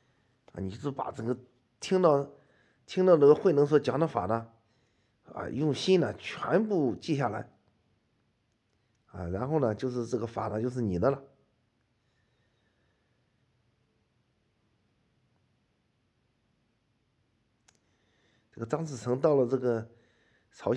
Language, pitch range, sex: Chinese, 105-130 Hz, male